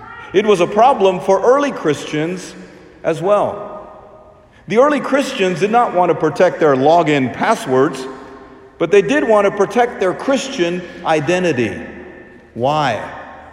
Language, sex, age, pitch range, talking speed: English, male, 50-69, 160-260 Hz, 135 wpm